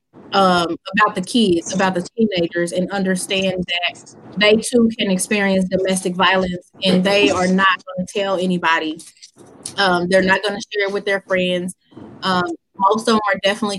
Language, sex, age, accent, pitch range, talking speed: English, female, 20-39, American, 180-210 Hz, 170 wpm